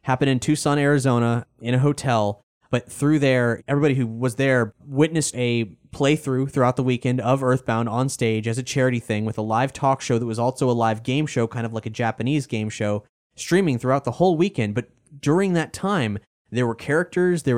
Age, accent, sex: 20-39, American, male